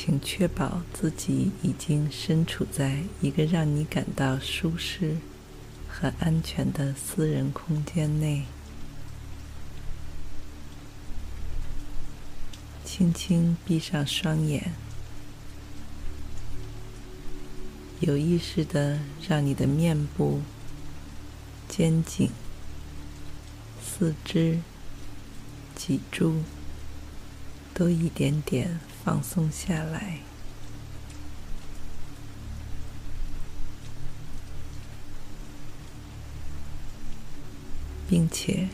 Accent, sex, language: native, female, Chinese